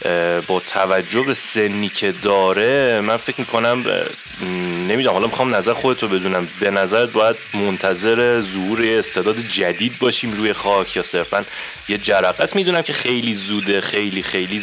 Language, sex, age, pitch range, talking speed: Persian, male, 30-49, 95-115 Hz, 150 wpm